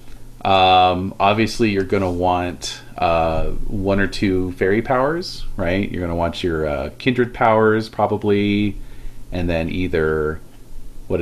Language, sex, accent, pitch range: English, male, American, 90-120 Hz